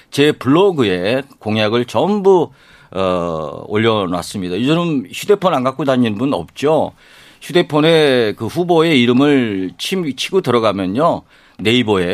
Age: 50-69